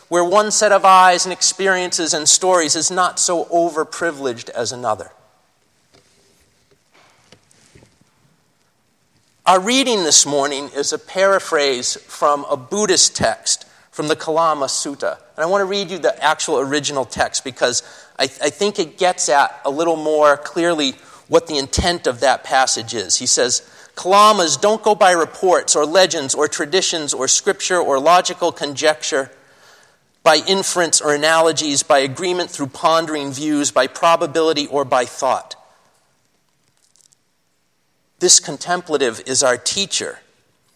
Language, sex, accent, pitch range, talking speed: English, male, American, 140-180 Hz, 135 wpm